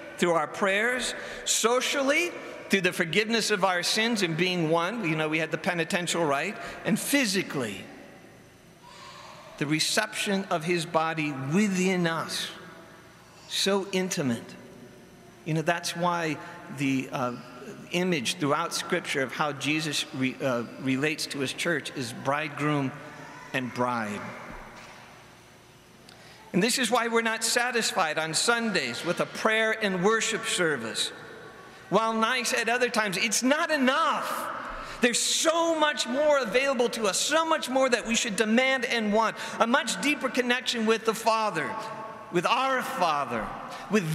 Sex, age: male, 50-69